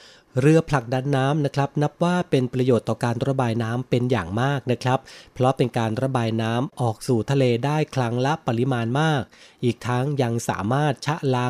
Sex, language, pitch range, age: male, Thai, 110-135 Hz, 30-49